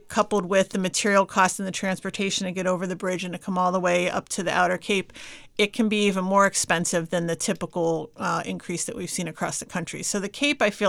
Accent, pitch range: American, 180-205 Hz